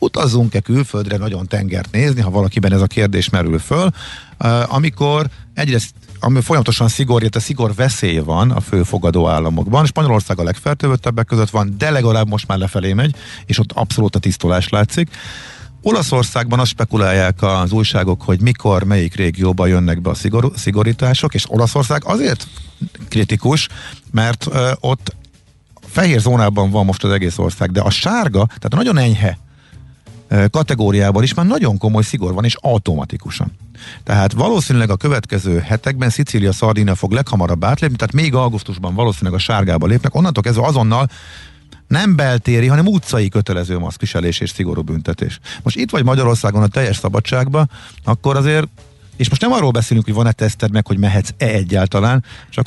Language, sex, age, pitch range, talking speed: Hungarian, male, 50-69, 100-130 Hz, 155 wpm